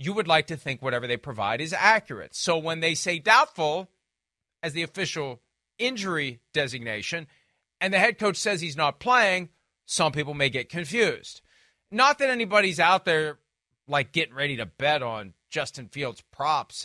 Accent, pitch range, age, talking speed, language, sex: American, 125-175 Hz, 40-59, 165 wpm, English, male